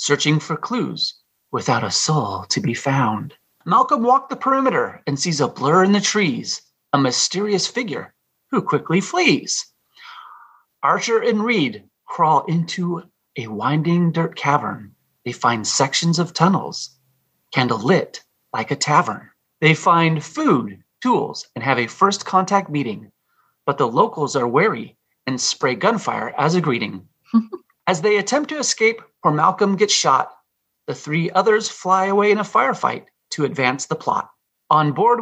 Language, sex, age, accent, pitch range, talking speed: English, male, 30-49, American, 150-220 Hz, 150 wpm